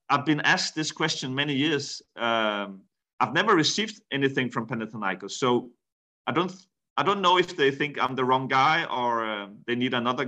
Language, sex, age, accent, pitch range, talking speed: Greek, male, 40-59, Danish, 115-145 Hz, 195 wpm